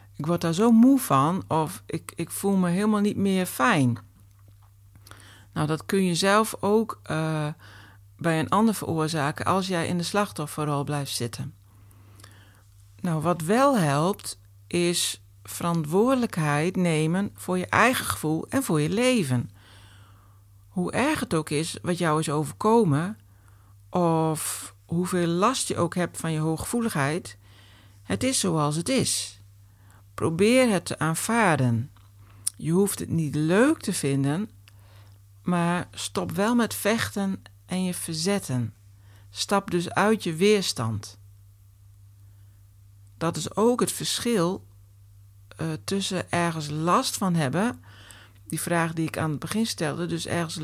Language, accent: Dutch, Dutch